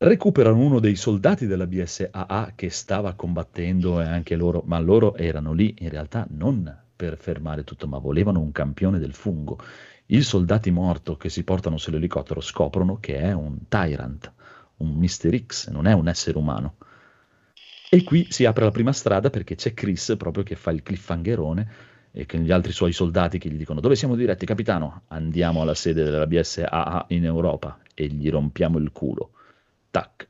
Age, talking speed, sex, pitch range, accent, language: 40-59, 175 wpm, male, 80-105 Hz, native, Italian